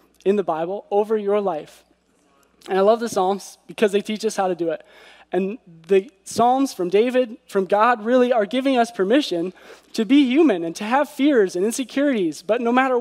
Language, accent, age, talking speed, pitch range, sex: English, American, 20-39, 200 wpm, 190-245 Hz, male